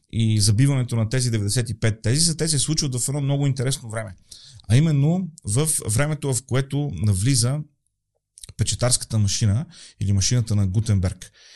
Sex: male